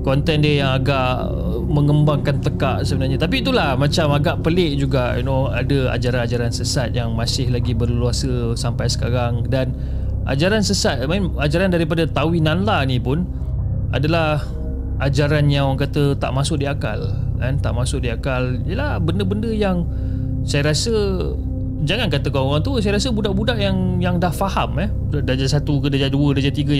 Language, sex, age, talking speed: Malay, male, 30-49, 165 wpm